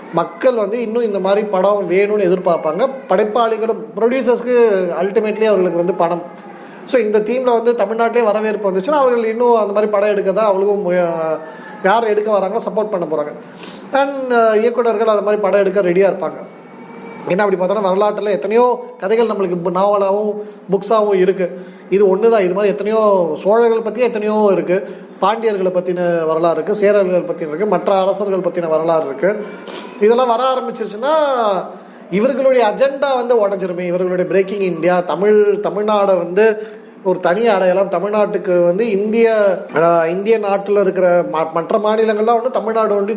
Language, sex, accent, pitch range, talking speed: Tamil, male, native, 185-220 Hz, 140 wpm